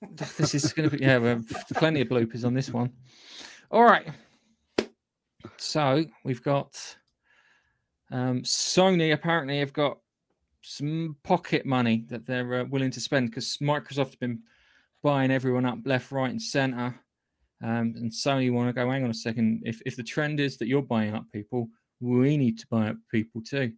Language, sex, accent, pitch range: English, male, British, 115-135 Hz